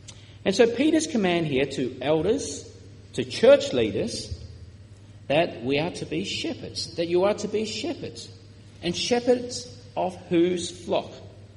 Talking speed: 140 wpm